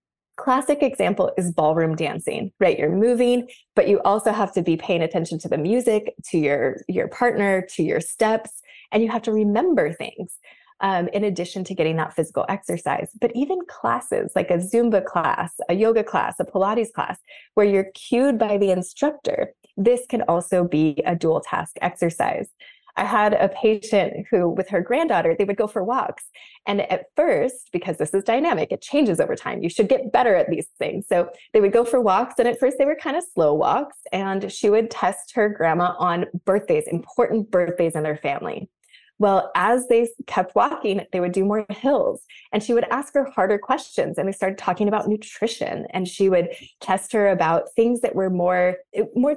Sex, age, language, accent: female, 20-39, English, American